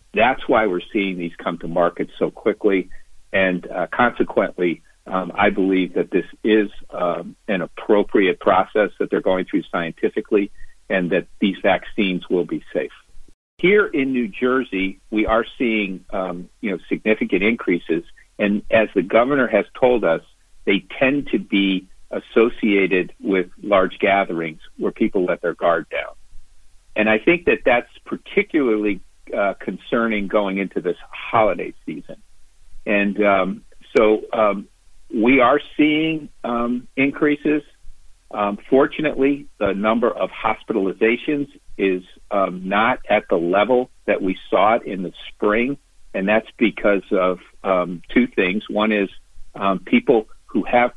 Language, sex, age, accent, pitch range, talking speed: English, male, 50-69, American, 90-120 Hz, 145 wpm